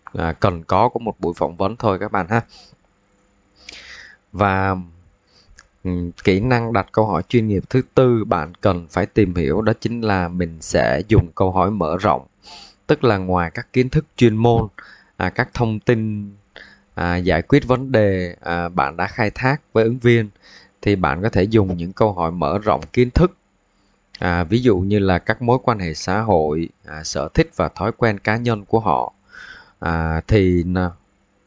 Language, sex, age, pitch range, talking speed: Vietnamese, male, 20-39, 90-115 Hz, 185 wpm